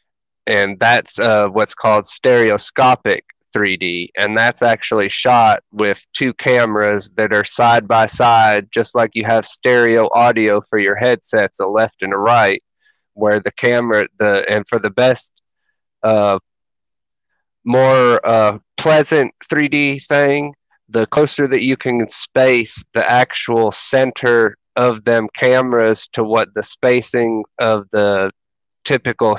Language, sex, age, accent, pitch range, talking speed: English, male, 30-49, American, 105-125 Hz, 135 wpm